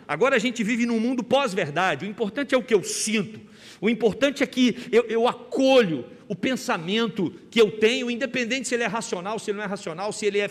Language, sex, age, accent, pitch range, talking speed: Portuguese, male, 60-79, Brazilian, 195-250 Hz, 225 wpm